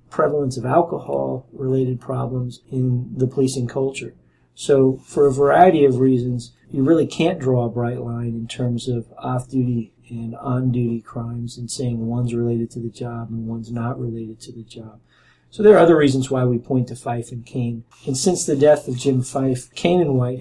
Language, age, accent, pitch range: English, 40-59, American, 120-135 Hz